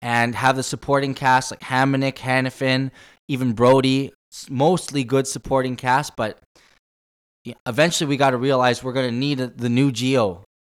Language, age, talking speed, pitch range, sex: English, 10-29, 150 wpm, 105-130 Hz, male